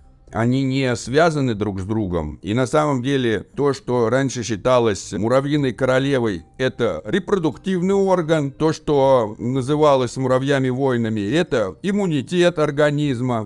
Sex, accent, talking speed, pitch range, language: male, native, 120 wpm, 115-150 Hz, Russian